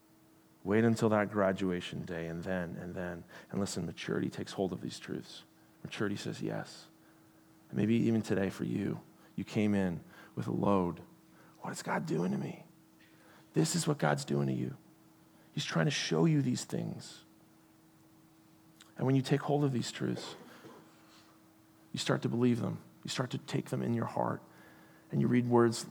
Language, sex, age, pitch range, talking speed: English, male, 40-59, 100-130 Hz, 175 wpm